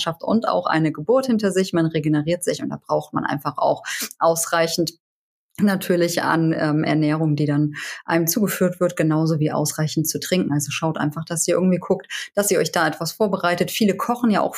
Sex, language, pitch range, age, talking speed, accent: female, German, 160-200 Hz, 30-49, 195 wpm, German